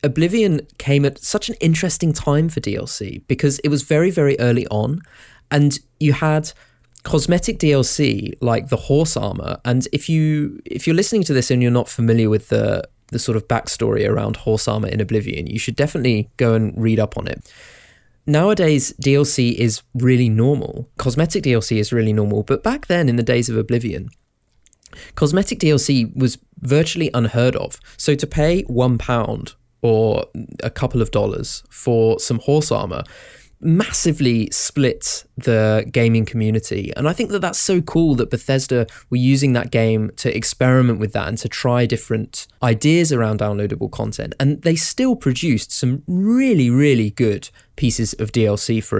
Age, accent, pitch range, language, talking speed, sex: 20-39, British, 115-145 Hz, English, 170 wpm, male